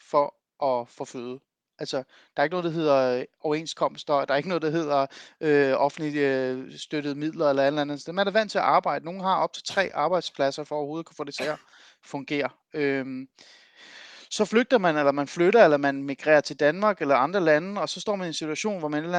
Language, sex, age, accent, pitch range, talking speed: Danish, male, 30-49, native, 140-180 Hz, 235 wpm